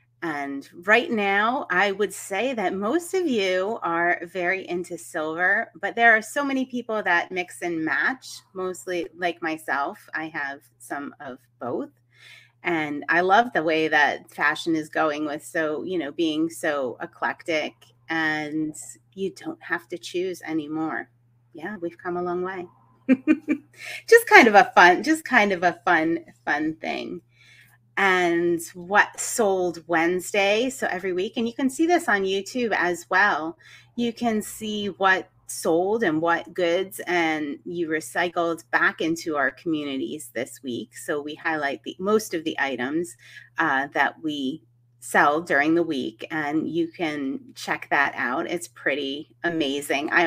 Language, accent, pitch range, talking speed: English, American, 155-215 Hz, 155 wpm